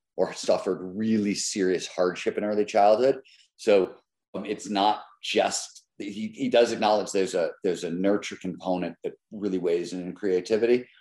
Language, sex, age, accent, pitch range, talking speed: English, male, 50-69, American, 90-130 Hz, 160 wpm